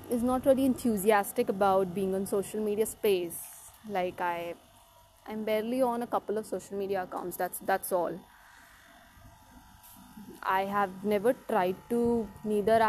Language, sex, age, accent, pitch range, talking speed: English, female, 20-39, Indian, 185-235 Hz, 140 wpm